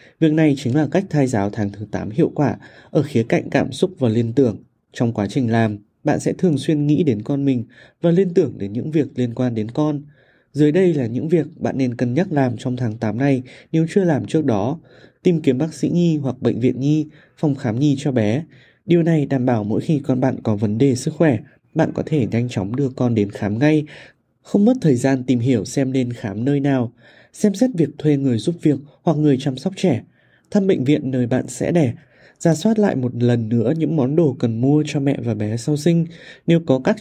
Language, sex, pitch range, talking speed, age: Vietnamese, male, 120-155 Hz, 240 wpm, 20-39